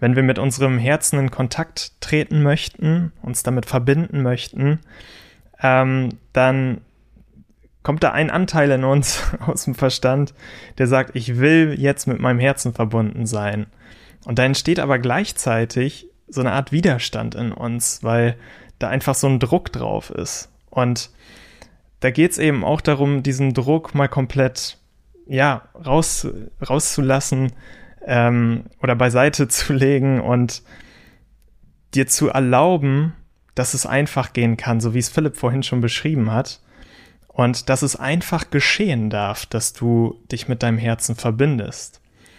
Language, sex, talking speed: German, male, 140 wpm